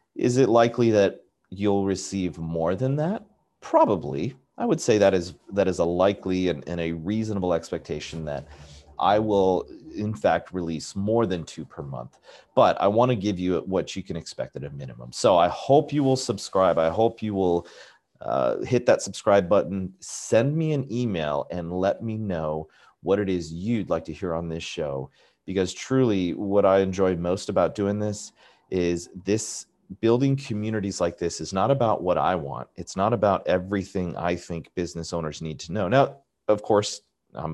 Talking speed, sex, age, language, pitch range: 185 wpm, male, 30-49, English, 80-105 Hz